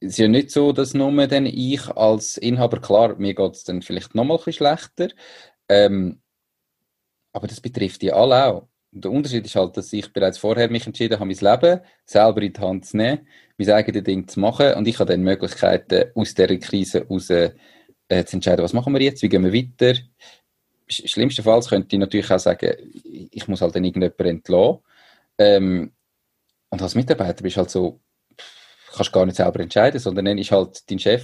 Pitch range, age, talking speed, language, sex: 100-125 Hz, 30-49, 195 wpm, German, male